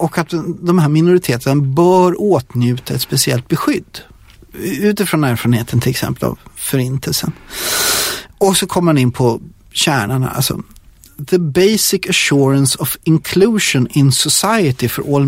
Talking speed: 130 wpm